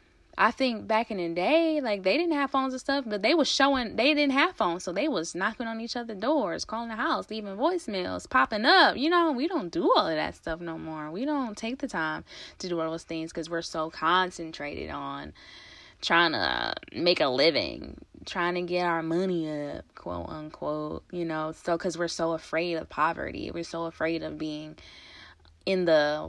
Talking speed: 205 wpm